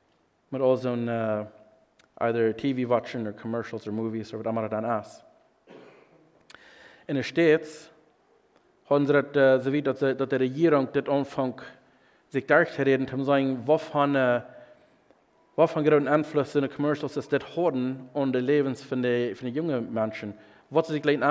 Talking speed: 120 wpm